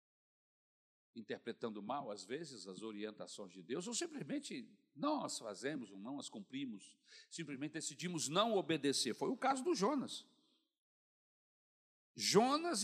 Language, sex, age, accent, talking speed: Portuguese, male, 60-79, Brazilian, 125 wpm